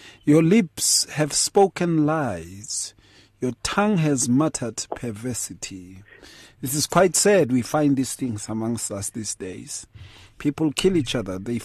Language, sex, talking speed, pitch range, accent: English, male, 140 wpm, 110-150 Hz, South African